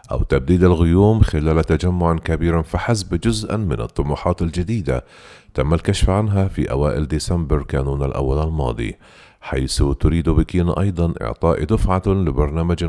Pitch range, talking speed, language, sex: 80-95 Hz, 125 wpm, Arabic, male